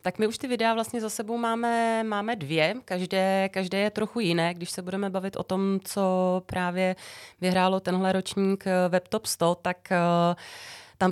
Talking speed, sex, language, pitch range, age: 165 wpm, female, Czech, 170-195 Hz, 30-49